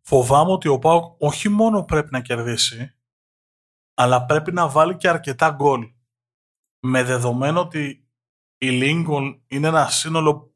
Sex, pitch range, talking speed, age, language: male, 125-155 Hz, 135 wpm, 20-39, Greek